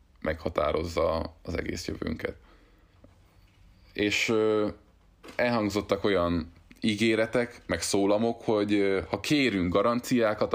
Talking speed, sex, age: 90 wpm, male, 20-39